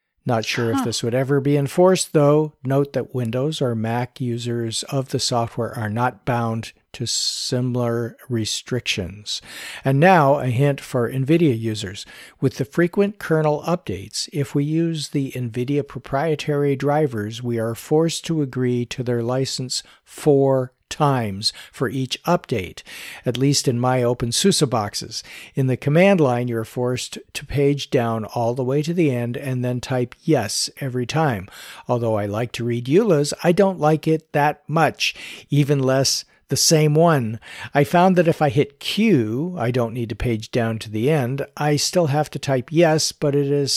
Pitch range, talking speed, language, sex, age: 120-150 Hz, 175 wpm, English, male, 50-69